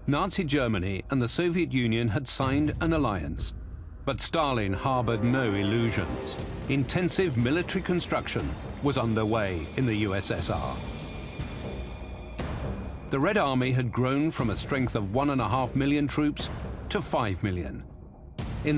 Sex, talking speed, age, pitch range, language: male, 125 wpm, 50-69, 100-140 Hz, English